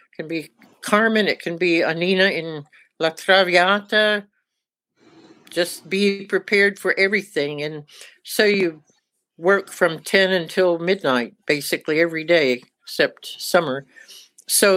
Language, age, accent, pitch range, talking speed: English, 60-79, American, 165-190 Hz, 120 wpm